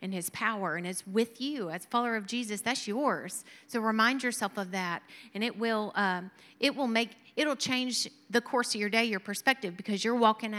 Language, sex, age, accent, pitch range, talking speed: English, female, 30-49, American, 215-255 Hz, 210 wpm